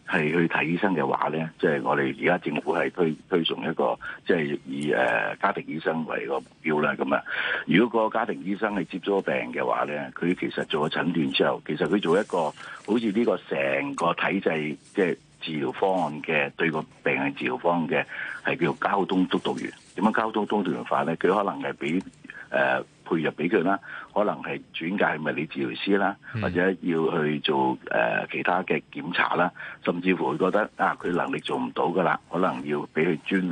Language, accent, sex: Chinese, native, male